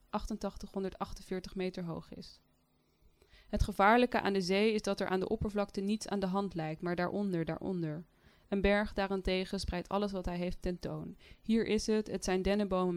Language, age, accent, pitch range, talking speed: Dutch, 20-39, Dutch, 175-205 Hz, 175 wpm